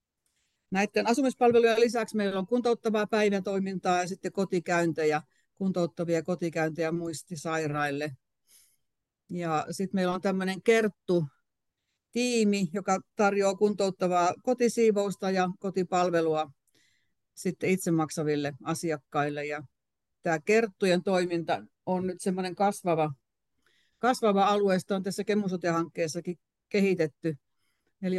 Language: Finnish